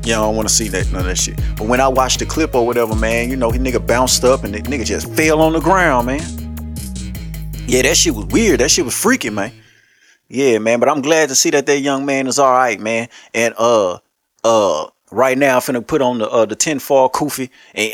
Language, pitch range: English, 115-140 Hz